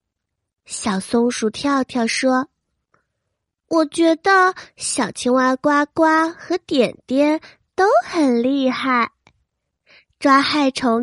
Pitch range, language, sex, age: 235-320 Hz, Chinese, female, 20-39